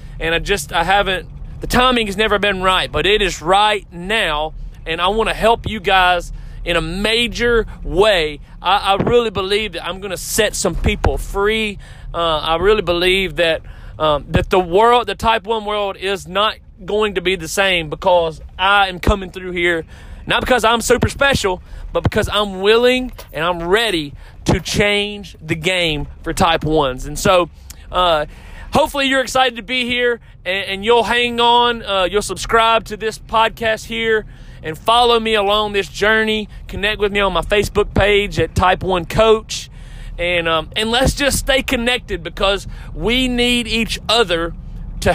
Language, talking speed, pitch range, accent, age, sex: English, 180 wpm, 170-225 Hz, American, 30-49, male